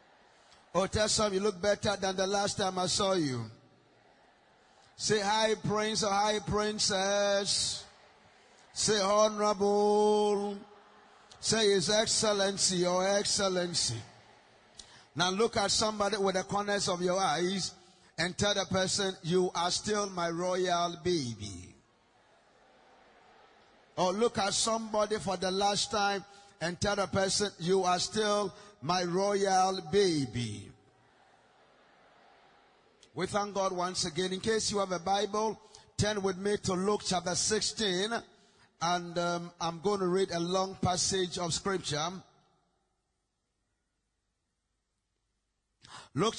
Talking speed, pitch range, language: 120 wpm, 175-205 Hz, English